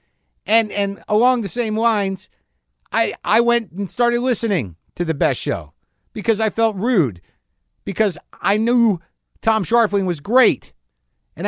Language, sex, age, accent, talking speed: English, male, 50-69, American, 145 wpm